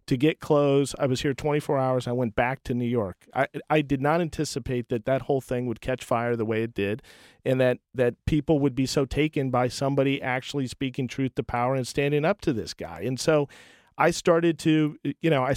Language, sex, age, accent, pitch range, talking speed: English, male, 40-59, American, 120-150 Hz, 225 wpm